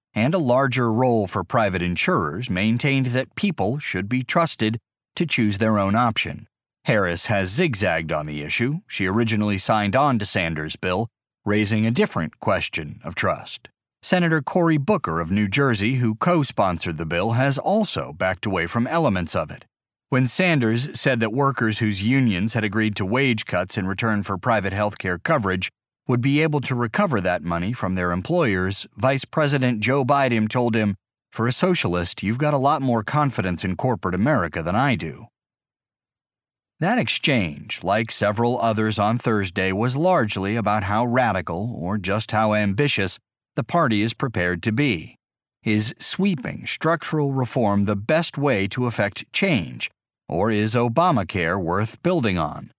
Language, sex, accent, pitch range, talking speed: English, male, American, 100-130 Hz, 165 wpm